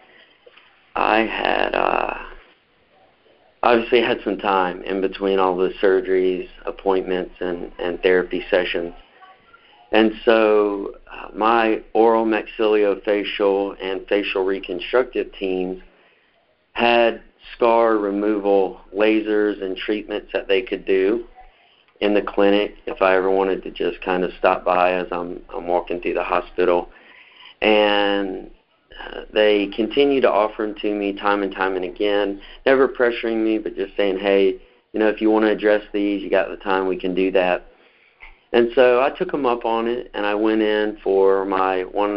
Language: English